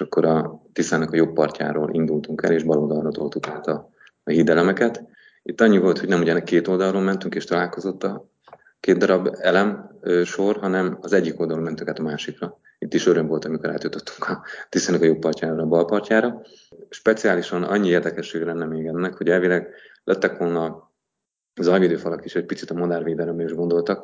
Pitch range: 80-90 Hz